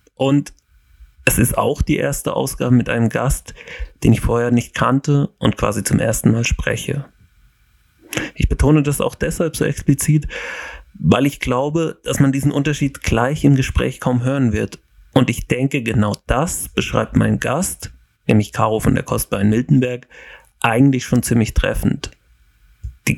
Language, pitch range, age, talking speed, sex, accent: German, 115-145 Hz, 30-49, 160 wpm, male, German